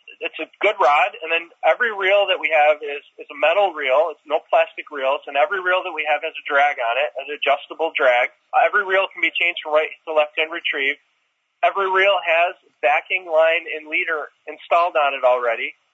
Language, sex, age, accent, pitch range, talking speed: English, male, 30-49, American, 150-185 Hz, 205 wpm